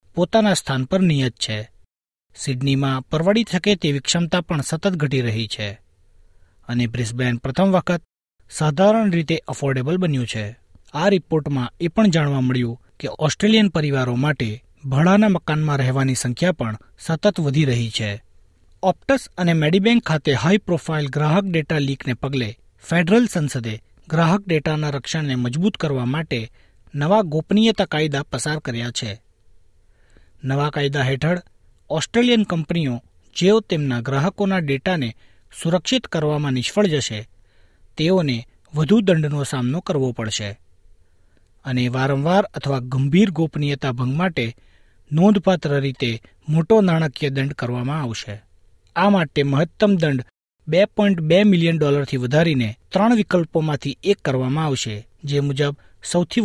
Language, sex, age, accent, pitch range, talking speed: Gujarati, male, 40-59, native, 120-170 Hz, 120 wpm